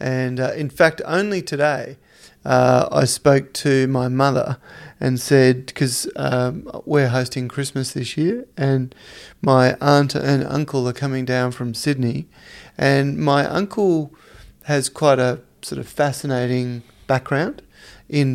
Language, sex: English, male